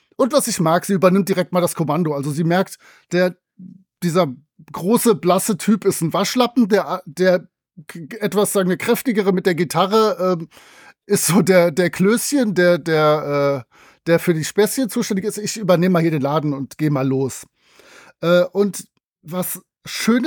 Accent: German